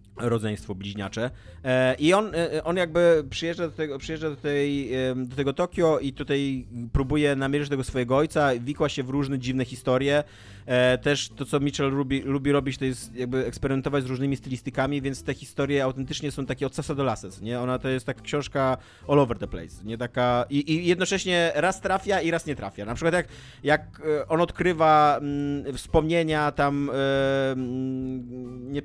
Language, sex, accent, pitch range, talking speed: Polish, male, native, 125-150 Hz, 175 wpm